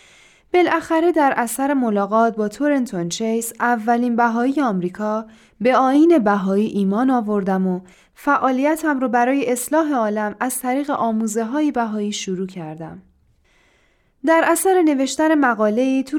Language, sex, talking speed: Persian, female, 120 wpm